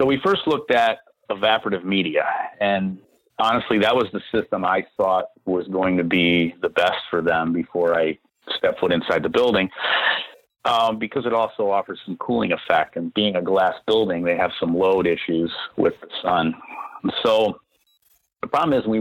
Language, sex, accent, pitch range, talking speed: English, male, American, 90-150 Hz, 175 wpm